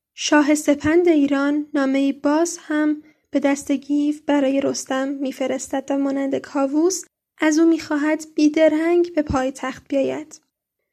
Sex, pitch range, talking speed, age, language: female, 280-310 Hz, 120 wpm, 10-29, Persian